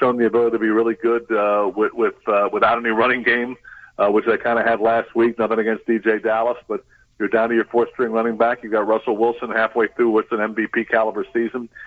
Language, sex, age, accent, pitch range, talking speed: English, male, 50-69, American, 110-125 Hz, 240 wpm